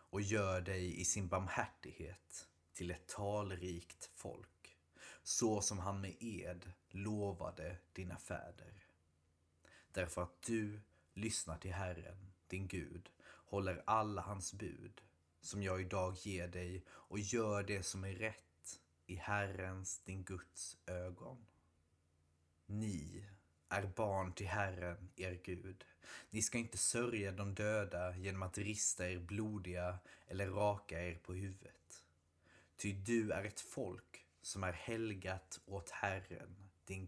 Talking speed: 130 wpm